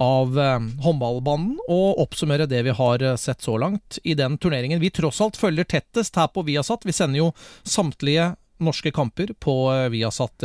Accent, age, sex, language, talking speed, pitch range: Swedish, 30-49, male, English, 165 wpm, 130-170 Hz